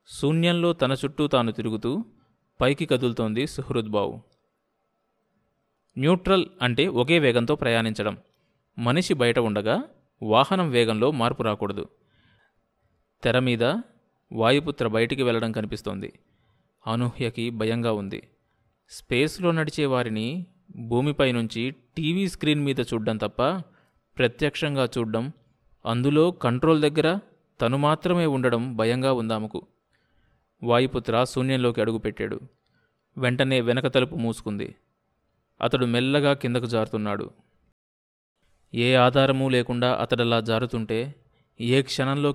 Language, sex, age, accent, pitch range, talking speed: Telugu, male, 20-39, native, 115-145 Hz, 95 wpm